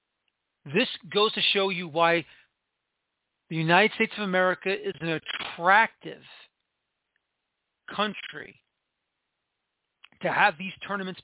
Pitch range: 170-205 Hz